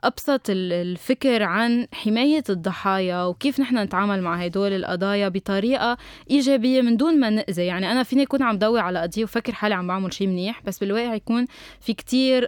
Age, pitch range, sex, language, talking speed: 20-39, 185-245 Hz, female, Arabic, 175 wpm